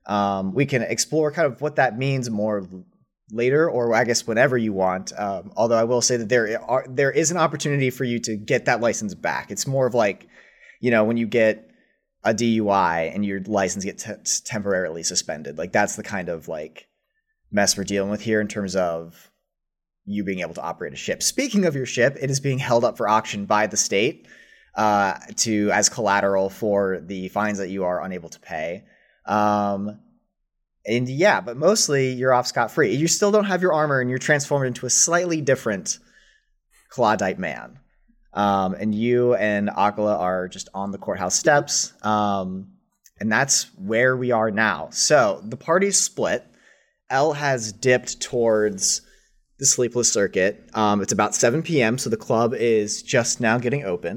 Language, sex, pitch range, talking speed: English, male, 100-130 Hz, 185 wpm